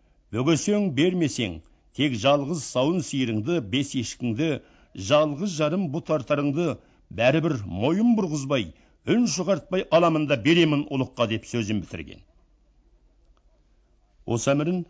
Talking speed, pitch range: 90 wpm, 105-145 Hz